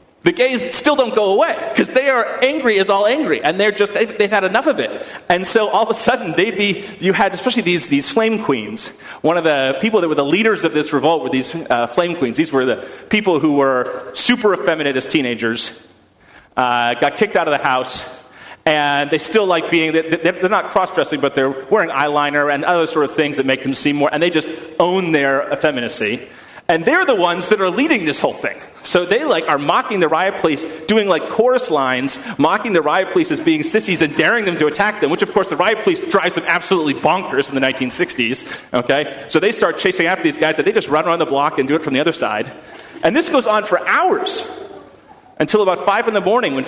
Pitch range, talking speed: 145-215 Hz, 230 wpm